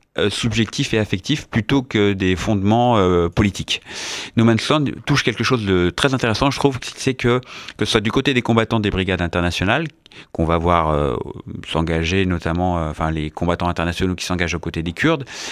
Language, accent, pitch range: French, French, 90-125 Hz